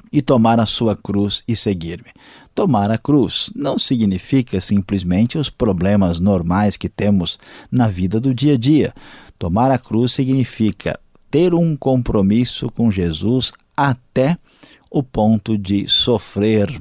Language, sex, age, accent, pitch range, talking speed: Portuguese, male, 50-69, Brazilian, 100-130 Hz, 135 wpm